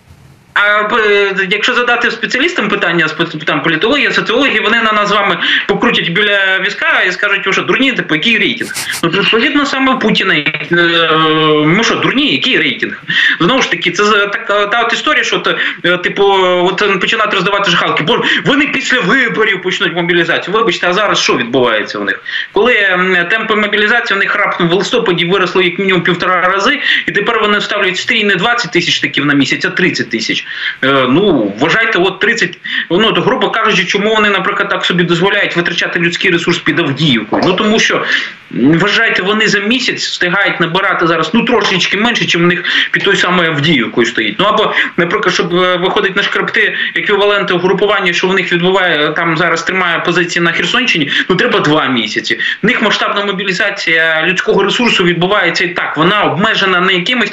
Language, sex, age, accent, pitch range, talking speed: Ukrainian, male, 20-39, native, 175-210 Hz, 170 wpm